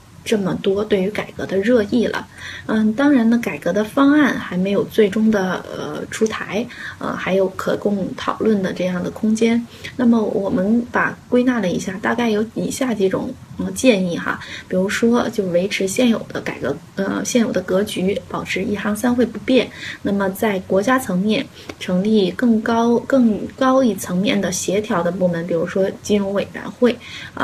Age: 20-39